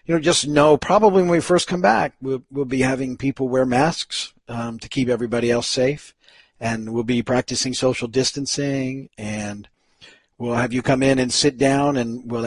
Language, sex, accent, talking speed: English, male, American, 190 wpm